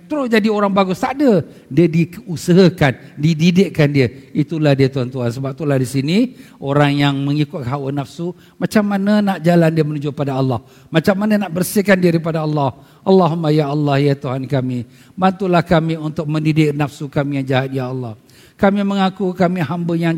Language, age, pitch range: Malay, 50-69, 150-195 Hz